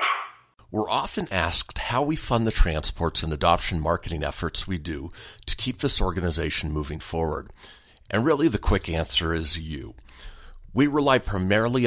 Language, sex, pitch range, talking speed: English, male, 85-115 Hz, 150 wpm